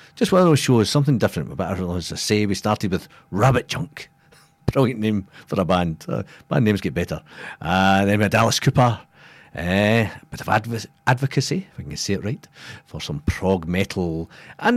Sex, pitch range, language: male, 100-155 Hz, English